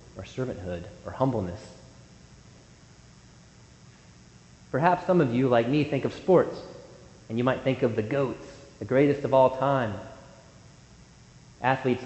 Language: English